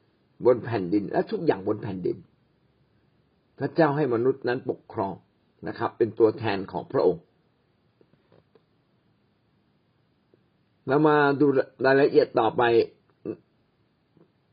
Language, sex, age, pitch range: Thai, male, 60-79, 120-165 Hz